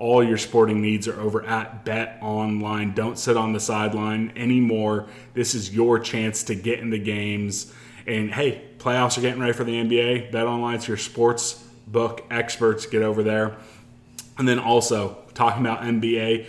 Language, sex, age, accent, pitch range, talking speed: English, male, 20-39, American, 110-120 Hz, 180 wpm